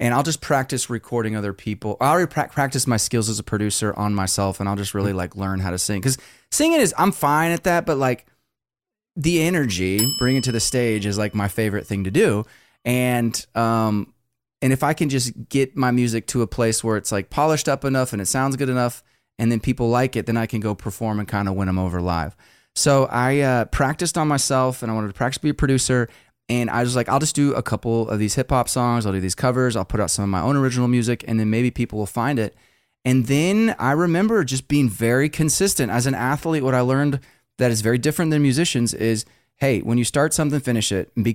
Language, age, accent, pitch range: English, 20-39, American, 110-140 Hz